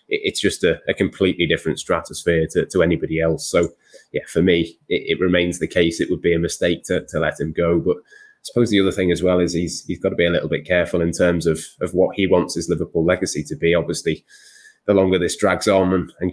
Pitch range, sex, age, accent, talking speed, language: 80-90 Hz, male, 20-39, British, 250 wpm, English